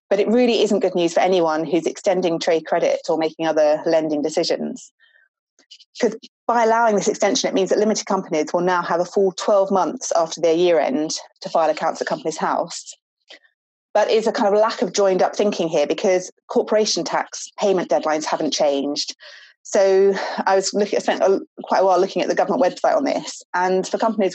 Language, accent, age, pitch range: English, British, 30-49, 160-205 Hz